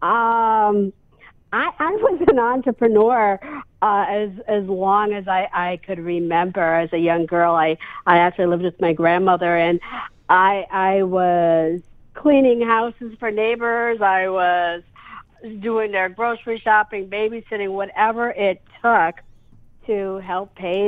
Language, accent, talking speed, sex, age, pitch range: English, American, 135 wpm, female, 50-69, 175-215 Hz